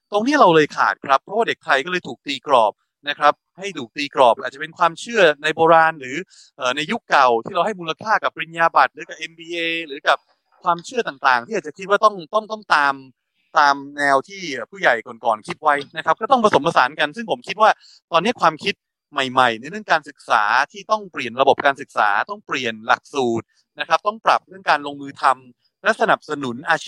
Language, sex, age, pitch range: Thai, male, 30-49, 140-195 Hz